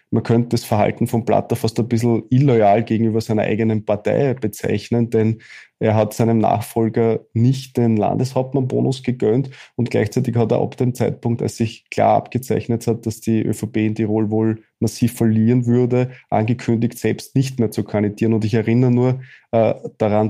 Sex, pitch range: male, 110-120 Hz